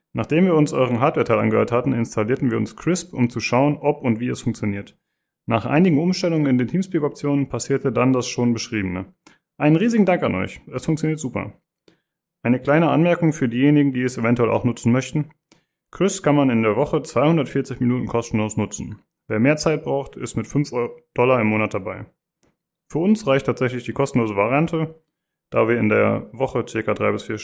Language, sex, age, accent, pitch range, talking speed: German, male, 30-49, German, 115-155 Hz, 185 wpm